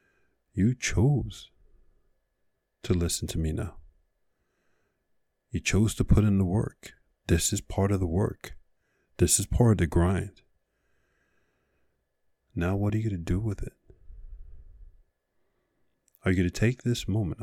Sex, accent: male, American